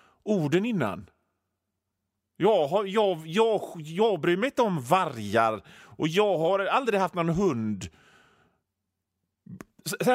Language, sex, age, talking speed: Swedish, male, 40-59, 120 wpm